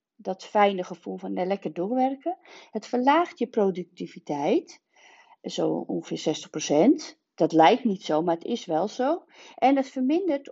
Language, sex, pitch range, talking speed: Dutch, female, 180-260 Hz, 150 wpm